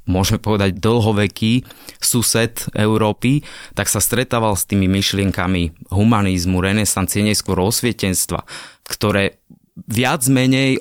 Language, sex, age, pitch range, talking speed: Slovak, male, 20-39, 95-115 Hz, 100 wpm